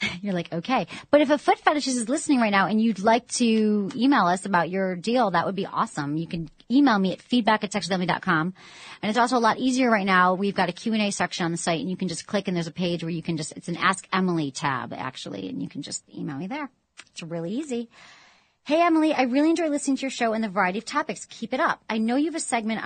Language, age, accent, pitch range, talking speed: English, 30-49, American, 180-240 Hz, 265 wpm